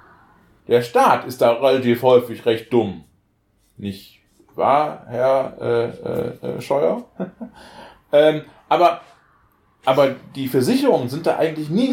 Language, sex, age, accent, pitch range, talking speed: German, male, 30-49, German, 95-120 Hz, 115 wpm